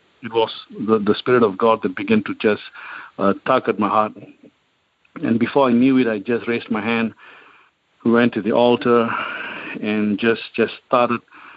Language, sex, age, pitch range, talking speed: English, male, 50-69, 110-120 Hz, 175 wpm